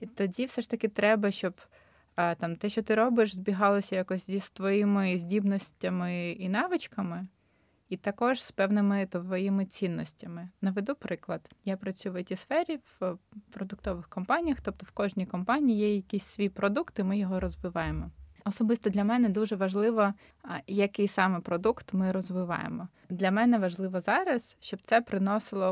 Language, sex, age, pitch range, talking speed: Ukrainian, female, 20-39, 185-215 Hz, 145 wpm